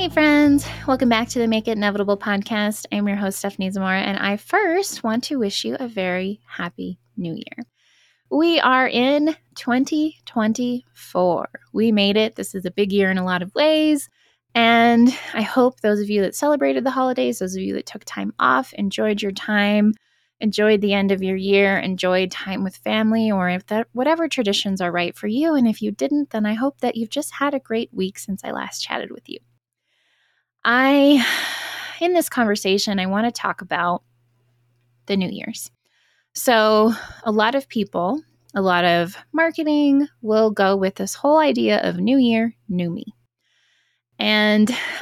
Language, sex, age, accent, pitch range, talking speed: English, female, 20-39, American, 185-245 Hz, 180 wpm